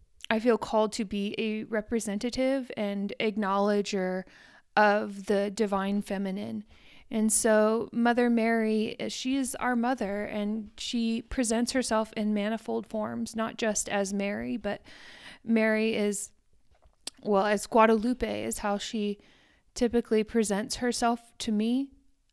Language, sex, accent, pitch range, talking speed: English, female, American, 215-240 Hz, 125 wpm